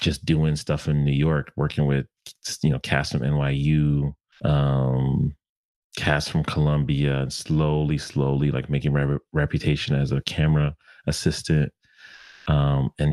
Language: English